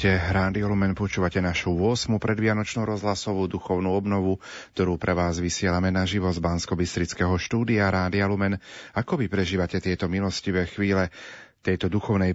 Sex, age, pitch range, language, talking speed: male, 40-59, 90-110 Hz, Slovak, 130 wpm